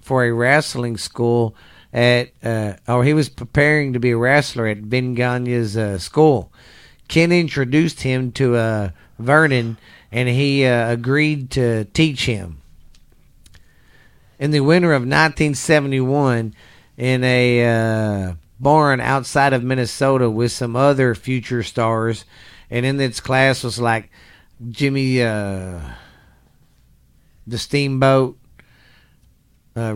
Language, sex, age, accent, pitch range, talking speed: English, male, 40-59, American, 115-130 Hz, 125 wpm